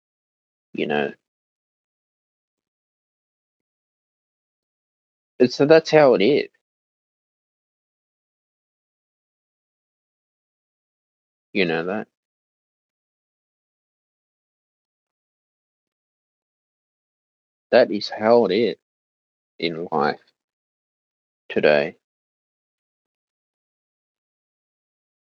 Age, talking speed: 40-59, 45 wpm